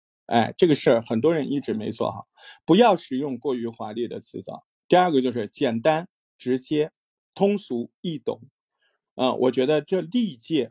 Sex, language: male, Chinese